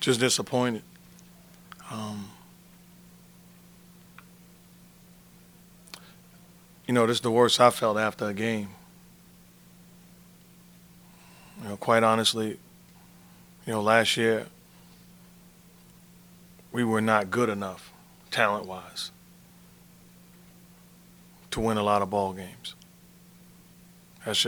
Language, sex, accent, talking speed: English, male, American, 90 wpm